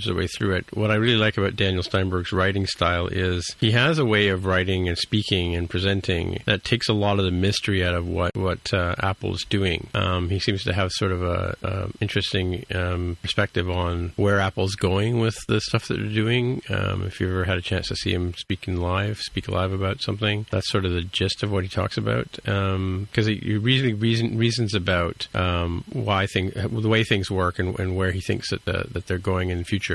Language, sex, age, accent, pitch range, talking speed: English, male, 40-59, American, 90-105 Hz, 225 wpm